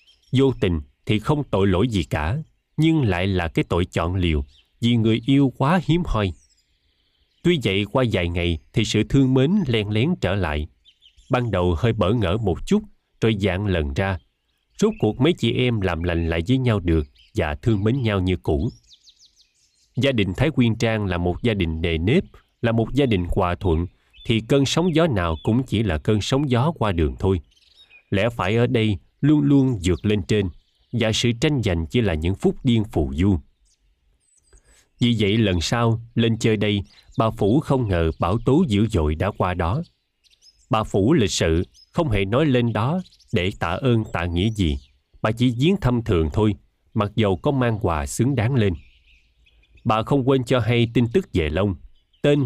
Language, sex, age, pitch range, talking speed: Vietnamese, male, 20-39, 85-125 Hz, 195 wpm